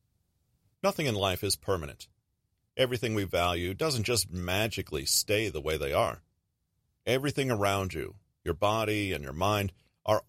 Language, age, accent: English, 40-59, American